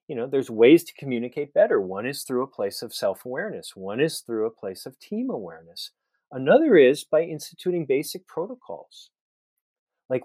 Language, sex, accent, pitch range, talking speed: English, male, American, 145-180 Hz, 170 wpm